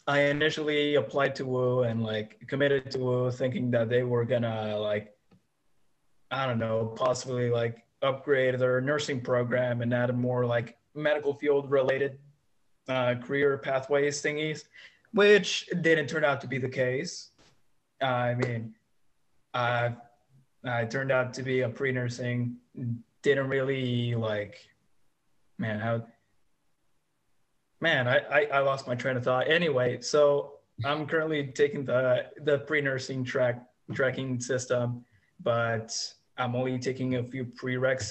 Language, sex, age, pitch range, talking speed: English, male, 20-39, 115-135 Hz, 135 wpm